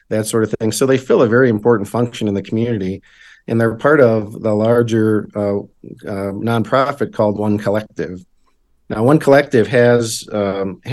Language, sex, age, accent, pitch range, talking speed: English, male, 50-69, American, 105-125 Hz, 170 wpm